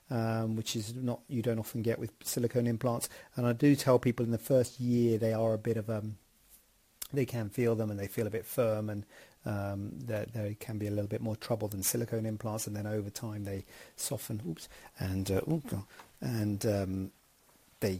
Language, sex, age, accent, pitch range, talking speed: English, male, 40-59, British, 105-120 Hz, 215 wpm